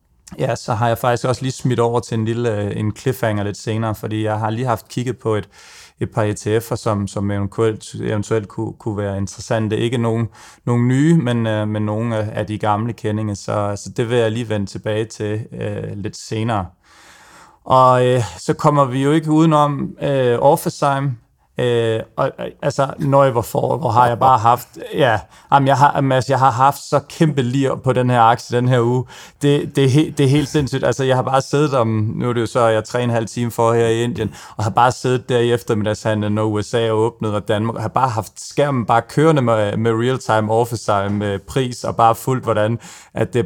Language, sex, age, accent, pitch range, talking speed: Danish, male, 30-49, native, 110-130 Hz, 210 wpm